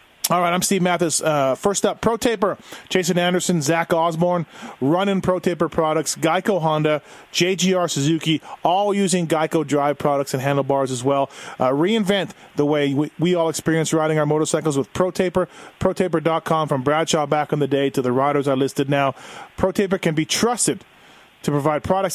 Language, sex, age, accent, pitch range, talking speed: English, male, 30-49, American, 145-185 Hz, 180 wpm